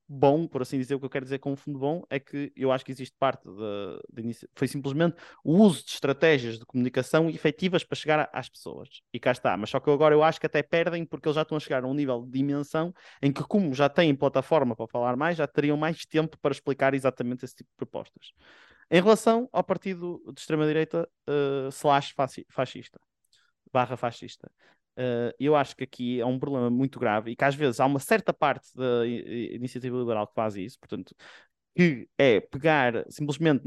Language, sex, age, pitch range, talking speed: Portuguese, male, 20-39, 125-165 Hz, 210 wpm